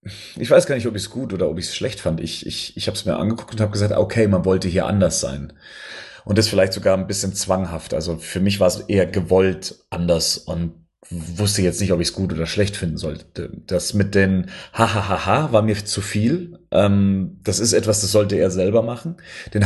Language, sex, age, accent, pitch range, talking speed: German, male, 30-49, German, 95-110 Hz, 230 wpm